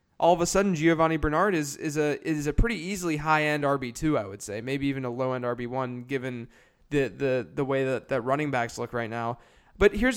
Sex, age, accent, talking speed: male, 20-39, American, 230 wpm